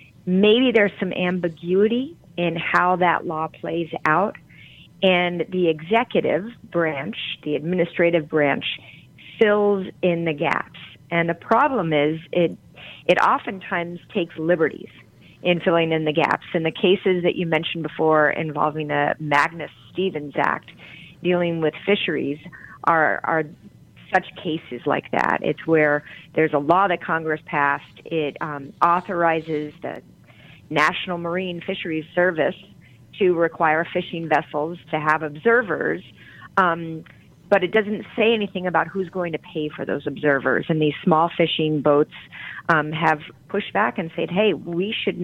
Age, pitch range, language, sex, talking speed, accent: 40-59, 155-180 Hz, English, female, 140 wpm, American